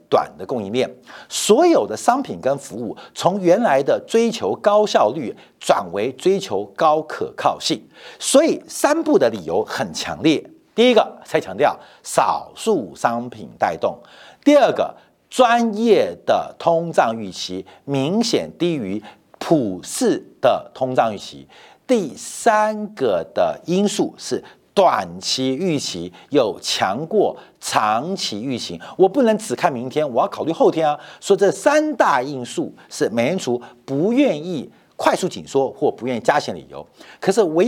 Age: 50-69